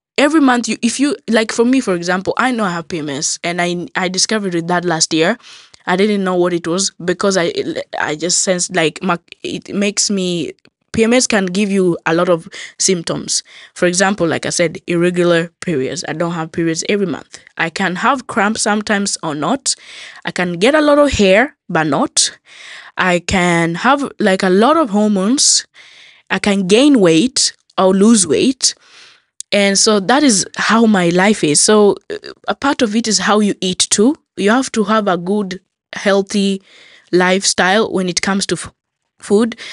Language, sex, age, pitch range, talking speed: Swedish, female, 20-39, 175-225 Hz, 180 wpm